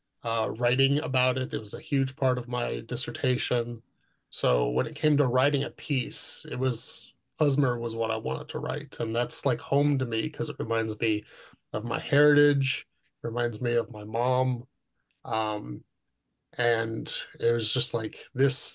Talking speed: 170 wpm